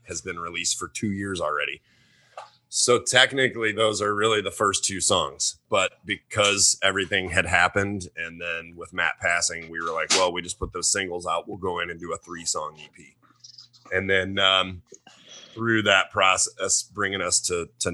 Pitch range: 90-120 Hz